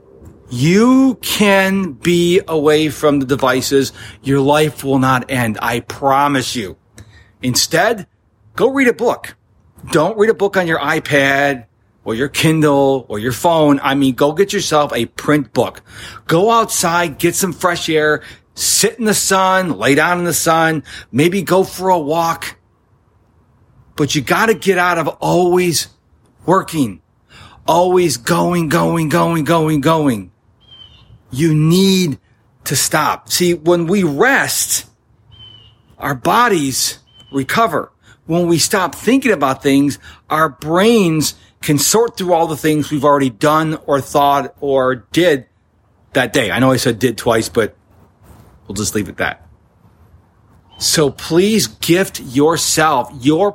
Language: English